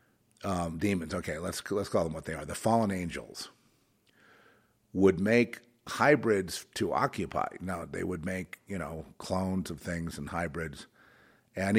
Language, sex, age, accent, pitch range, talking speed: English, male, 50-69, American, 95-135 Hz, 155 wpm